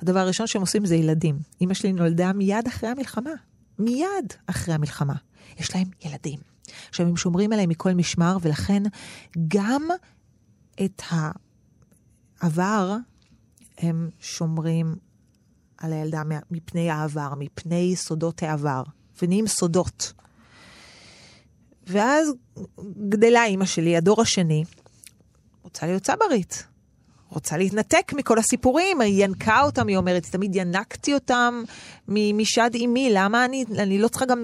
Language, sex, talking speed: Hebrew, female, 120 wpm